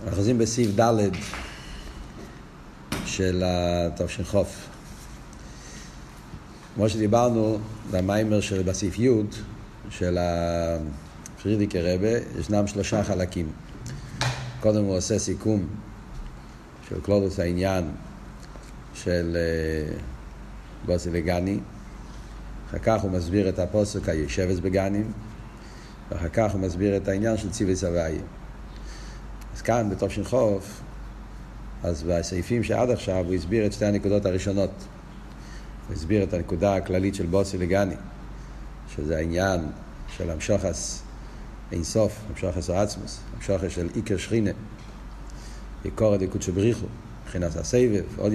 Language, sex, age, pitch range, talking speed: Hebrew, male, 50-69, 90-105 Hz, 100 wpm